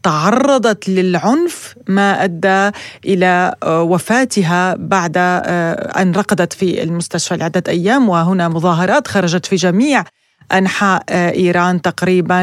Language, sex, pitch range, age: Arabic, female, 180-215 Hz, 30-49